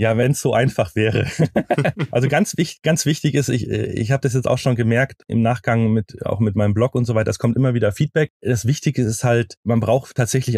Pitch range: 105-140 Hz